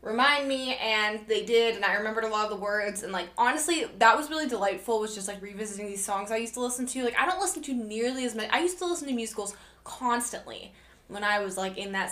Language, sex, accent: English, female, American